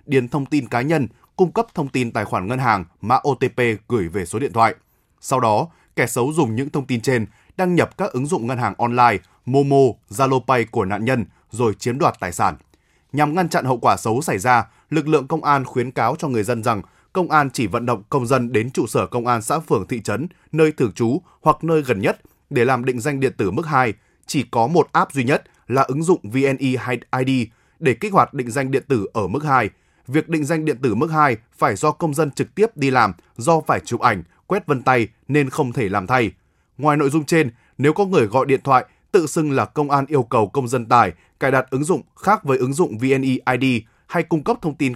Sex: male